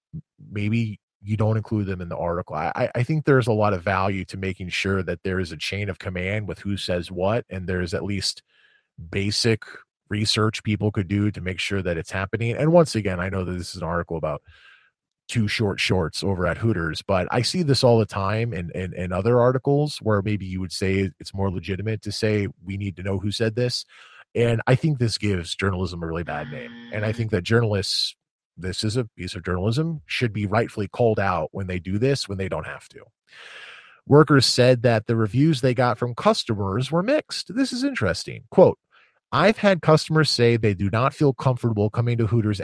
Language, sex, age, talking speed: English, male, 30-49, 215 wpm